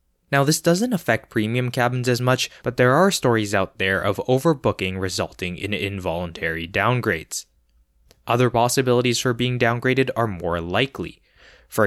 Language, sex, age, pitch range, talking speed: English, male, 20-39, 95-125 Hz, 145 wpm